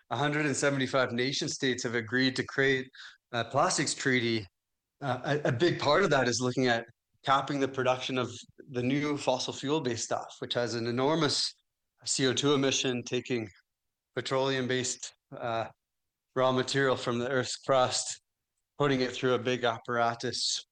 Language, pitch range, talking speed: English, 115-130 Hz, 140 wpm